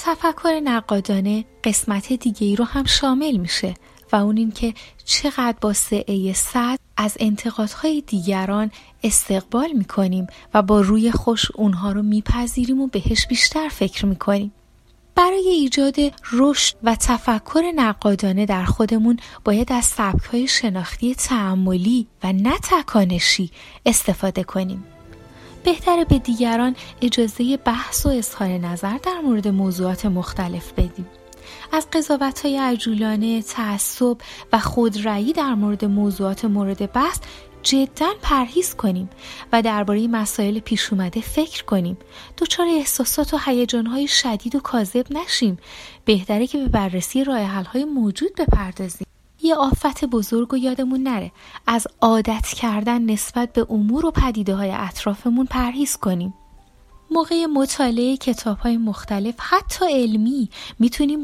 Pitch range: 200-265 Hz